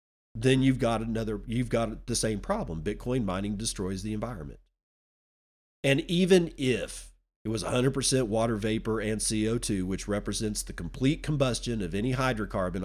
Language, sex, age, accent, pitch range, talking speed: English, male, 40-59, American, 95-130 Hz, 150 wpm